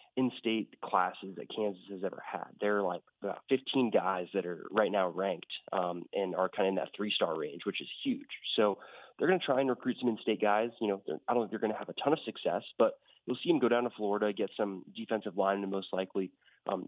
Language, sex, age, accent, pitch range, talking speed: English, male, 20-39, American, 100-120 Hz, 245 wpm